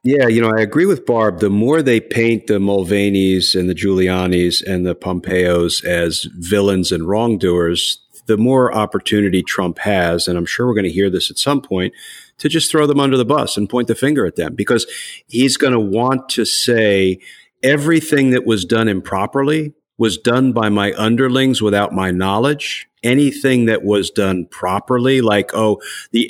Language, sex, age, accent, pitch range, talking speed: English, male, 50-69, American, 100-125 Hz, 185 wpm